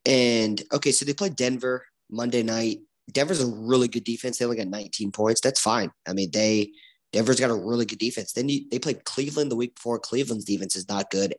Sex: male